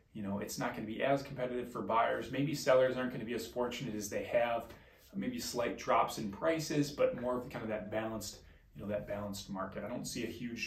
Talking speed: 245 wpm